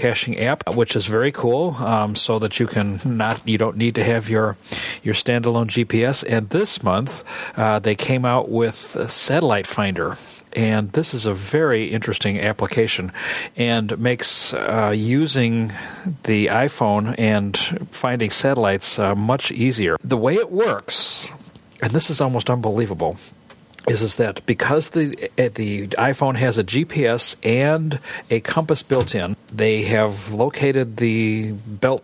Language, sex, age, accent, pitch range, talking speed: English, male, 50-69, American, 110-135 Hz, 150 wpm